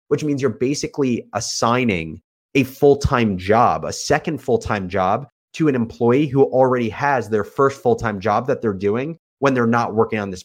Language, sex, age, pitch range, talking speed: English, male, 30-49, 105-130 Hz, 180 wpm